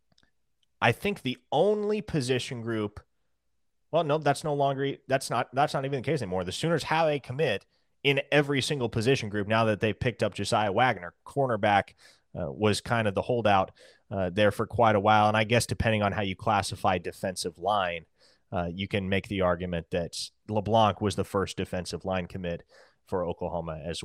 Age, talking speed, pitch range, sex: 30-49, 195 wpm, 95-125 Hz, male